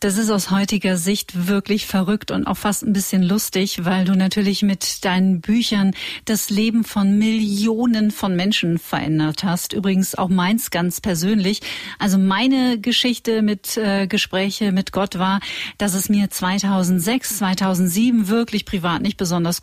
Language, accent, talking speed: German, German, 155 wpm